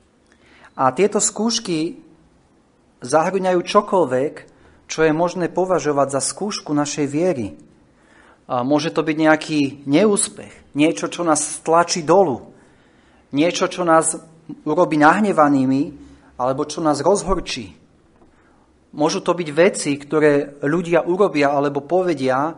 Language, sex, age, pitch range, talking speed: Slovak, male, 30-49, 145-180 Hz, 110 wpm